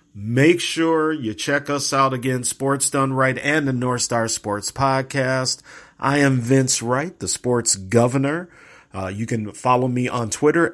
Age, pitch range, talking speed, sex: 40-59, 115-140 Hz, 170 wpm, male